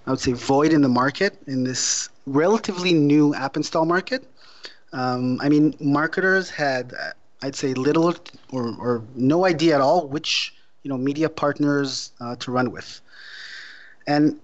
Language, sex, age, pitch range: English, male, 30-49, 130-155 Hz